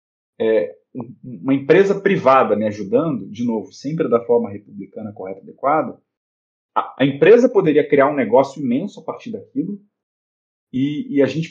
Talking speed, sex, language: 160 wpm, male, Portuguese